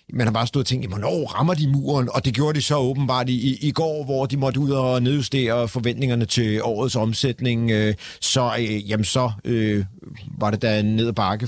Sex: male